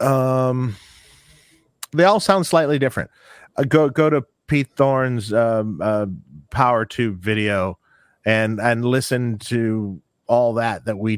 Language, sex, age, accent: English, male, 40-59, American